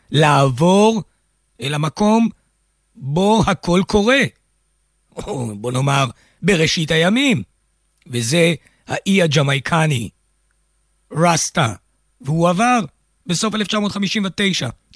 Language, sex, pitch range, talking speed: Hebrew, male, 140-200 Hz, 70 wpm